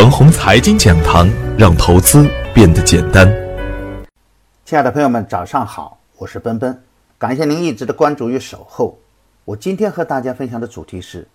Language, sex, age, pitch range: Chinese, male, 50-69, 105-145 Hz